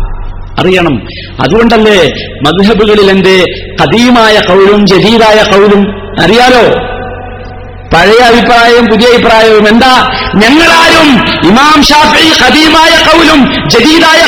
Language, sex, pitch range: Malayalam, male, 205-275 Hz